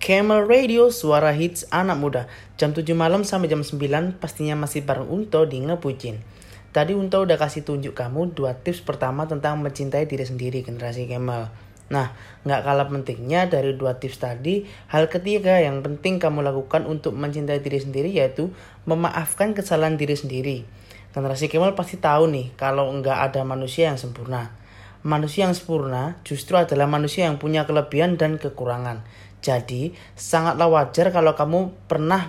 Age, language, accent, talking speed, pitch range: 20-39, Indonesian, native, 155 wpm, 130-165 Hz